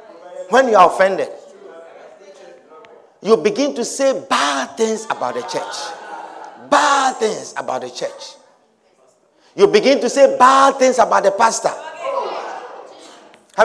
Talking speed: 125 wpm